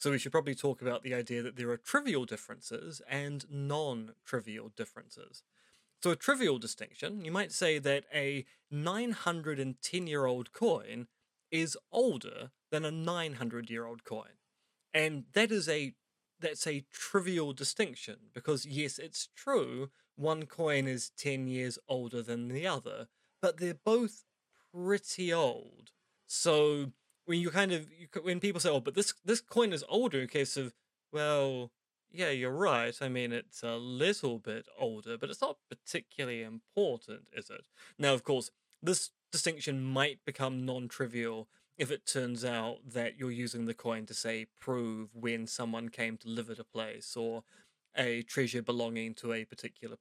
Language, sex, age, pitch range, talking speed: English, male, 20-39, 120-155 Hz, 150 wpm